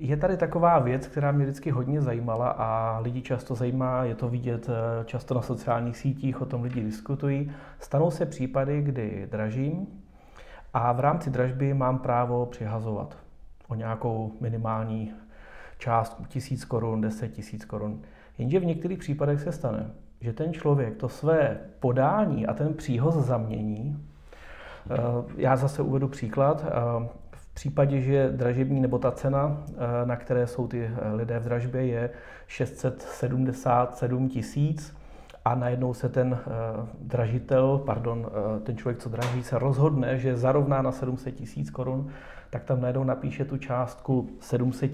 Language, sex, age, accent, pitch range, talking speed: Czech, male, 30-49, native, 120-140 Hz, 145 wpm